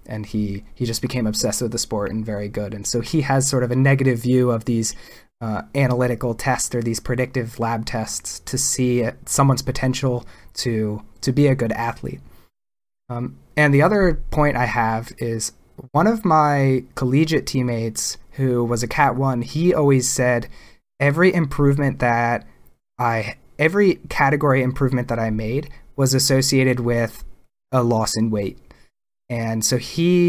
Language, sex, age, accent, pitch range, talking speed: English, male, 20-39, American, 115-135 Hz, 160 wpm